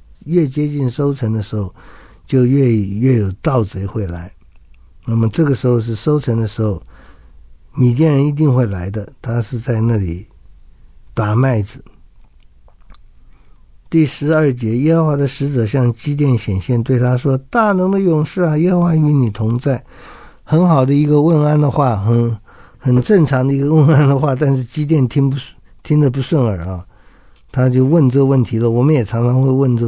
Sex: male